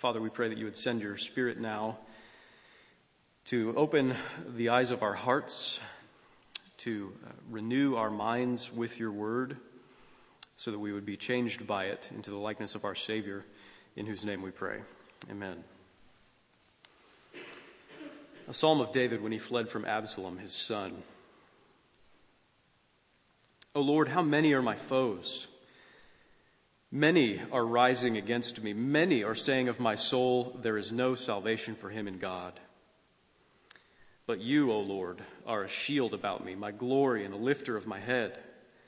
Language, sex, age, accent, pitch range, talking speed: English, male, 40-59, American, 105-135 Hz, 150 wpm